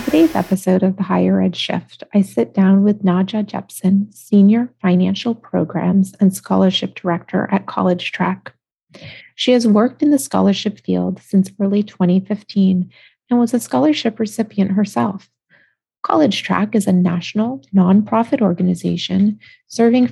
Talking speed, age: 140 wpm, 30-49